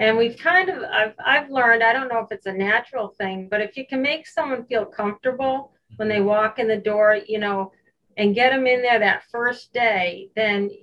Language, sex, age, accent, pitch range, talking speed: English, female, 40-59, American, 200-245 Hz, 220 wpm